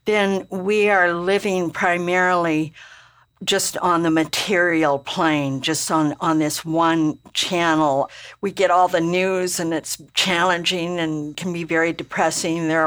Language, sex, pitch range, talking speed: English, female, 160-185 Hz, 140 wpm